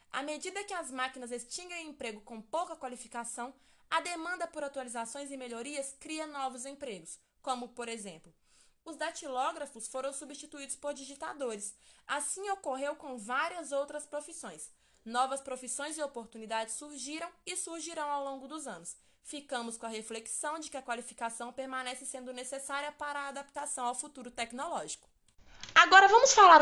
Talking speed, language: 145 wpm, Portuguese